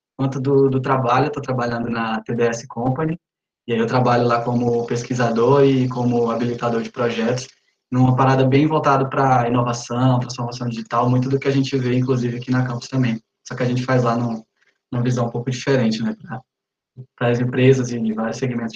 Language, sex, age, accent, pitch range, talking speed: Portuguese, male, 20-39, Brazilian, 120-135 Hz, 190 wpm